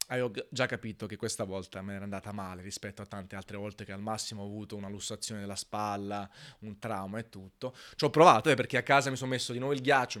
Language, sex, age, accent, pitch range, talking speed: Italian, male, 20-39, native, 105-125 Hz, 240 wpm